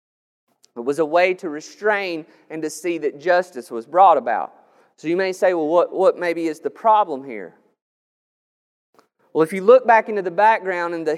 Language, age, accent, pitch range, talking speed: English, 30-49, American, 155-225 Hz, 195 wpm